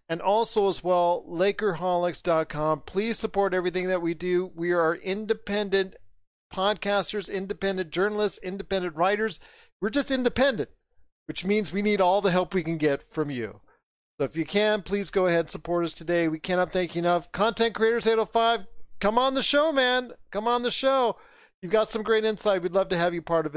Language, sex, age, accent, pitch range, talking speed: English, male, 40-59, American, 165-205 Hz, 190 wpm